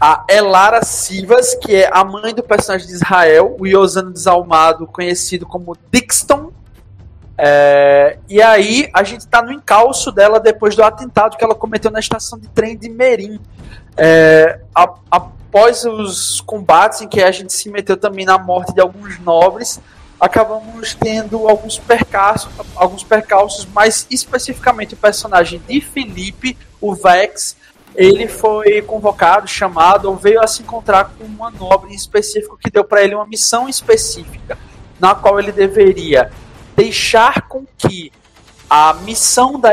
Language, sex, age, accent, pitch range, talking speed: Portuguese, male, 20-39, Brazilian, 185-225 Hz, 145 wpm